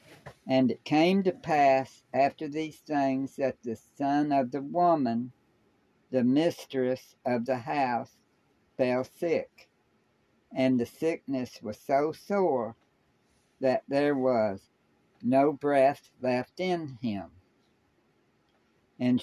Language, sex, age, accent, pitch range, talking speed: English, female, 60-79, American, 120-150 Hz, 110 wpm